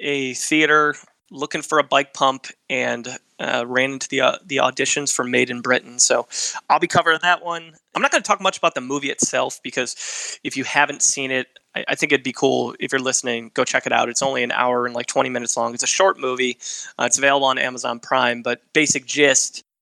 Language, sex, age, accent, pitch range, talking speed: English, male, 20-39, American, 120-145 Hz, 230 wpm